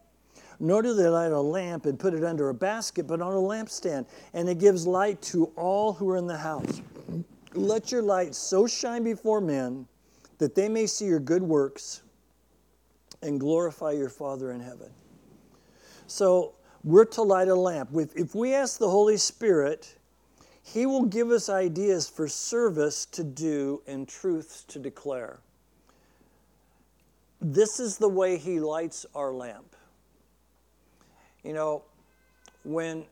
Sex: male